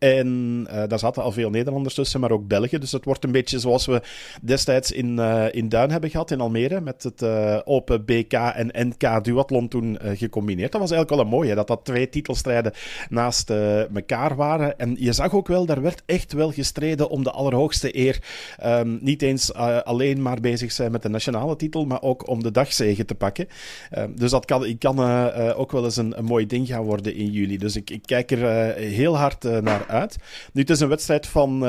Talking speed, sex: 230 wpm, male